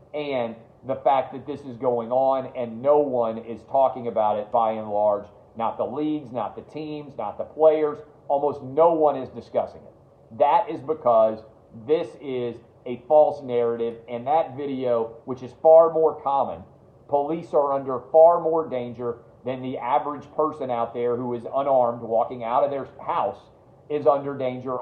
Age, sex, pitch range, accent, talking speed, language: 40-59, male, 120-150 Hz, American, 175 wpm, English